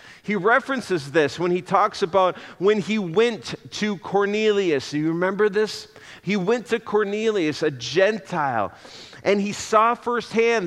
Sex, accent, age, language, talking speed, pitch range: male, American, 40-59, English, 145 wpm, 155-215 Hz